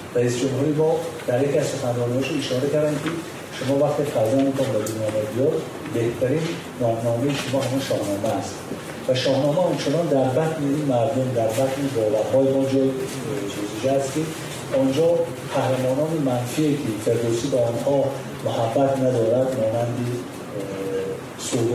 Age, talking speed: 40-59, 145 wpm